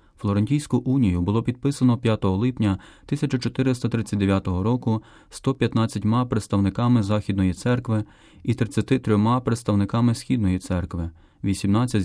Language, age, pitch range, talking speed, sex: Ukrainian, 30-49, 95-120 Hz, 90 wpm, male